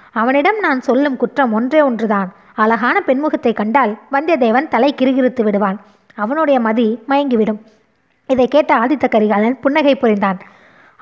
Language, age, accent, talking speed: Tamil, 20-39, native, 120 wpm